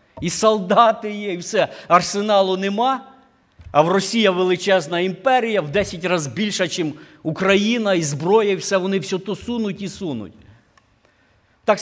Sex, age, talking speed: male, 50-69, 145 wpm